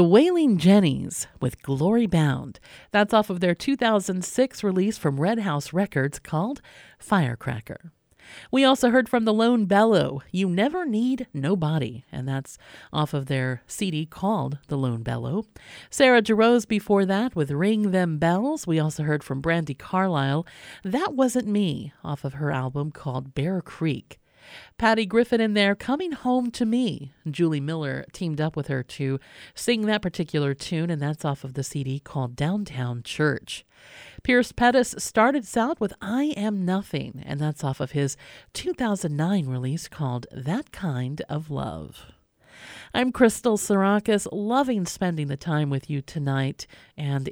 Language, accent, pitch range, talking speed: English, American, 145-215 Hz, 155 wpm